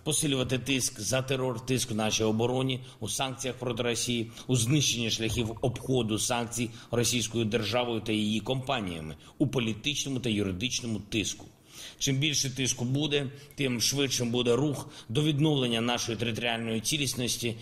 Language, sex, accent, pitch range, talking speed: Ukrainian, male, native, 110-135 Hz, 135 wpm